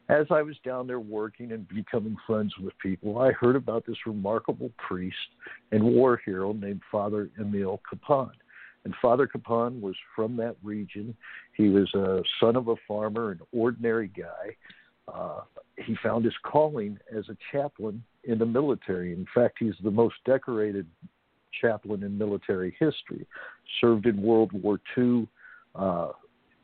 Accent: American